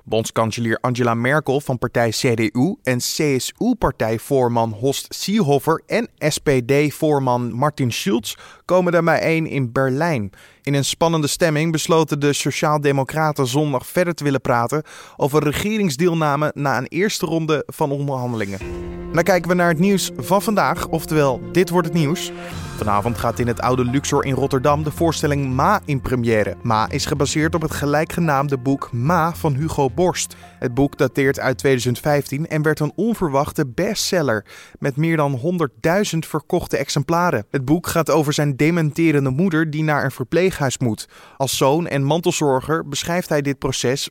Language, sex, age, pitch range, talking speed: Dutch, male, 20-39, 130-165 Hz, 155 wpm